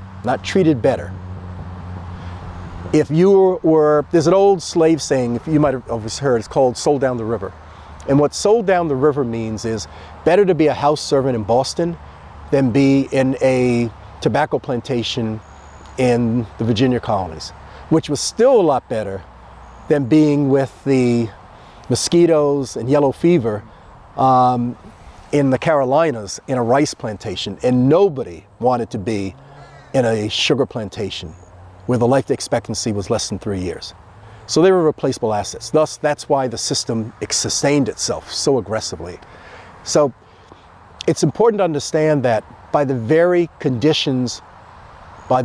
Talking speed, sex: 150 wpm, male